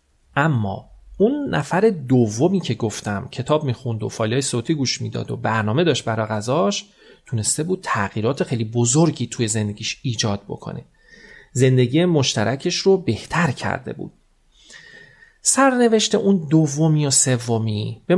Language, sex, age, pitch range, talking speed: Persian, male, 40-59, 120-185 Hz, 130 wpm